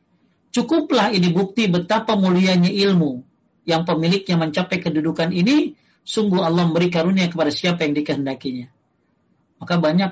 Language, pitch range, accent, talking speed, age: Indonesian, 150-195 Hz, native, 125 wpm, 40-59